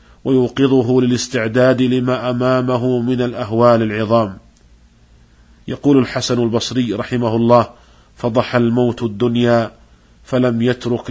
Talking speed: 90 wpm